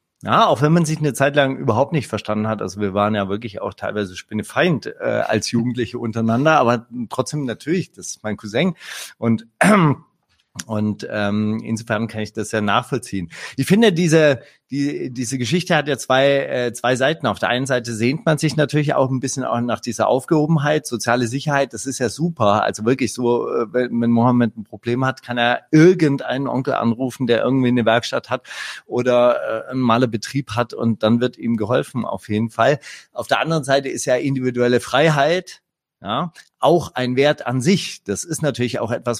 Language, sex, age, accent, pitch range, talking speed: German, male, 30-49, German, 115-145 Hz, 195 wpm